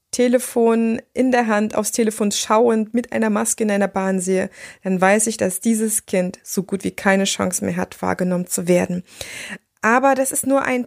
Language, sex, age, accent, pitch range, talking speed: German, female, 20-39, German, 200-245 Hz, 195 wpm